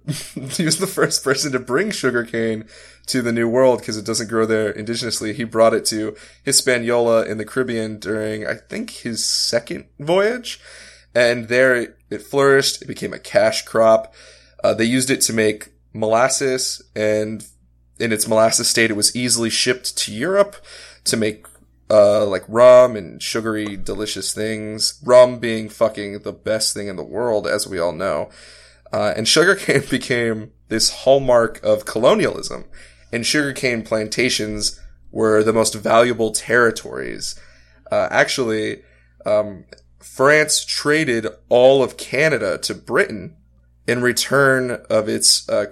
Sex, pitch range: male, 105-125 Hz